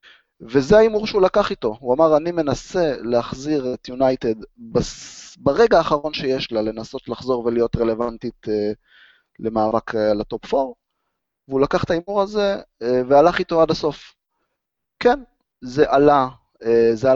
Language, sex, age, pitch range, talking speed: Hebrew, male, 20-39, 120-165 Hz, 130 wpm